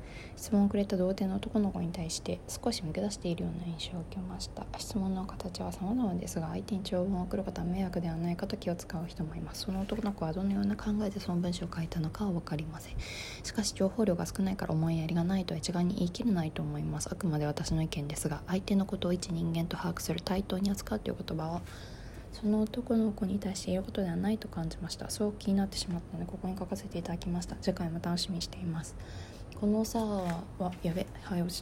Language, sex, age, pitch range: Japanese, female, 20-39, 160-200 Hz